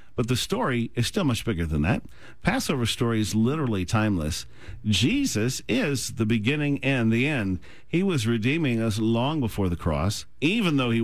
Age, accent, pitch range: 50-69, American, 100-125 Hz